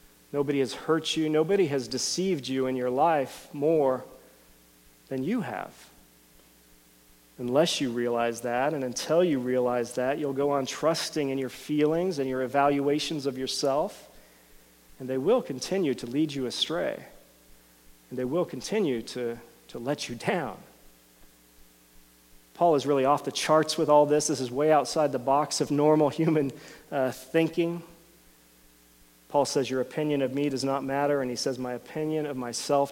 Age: 40-59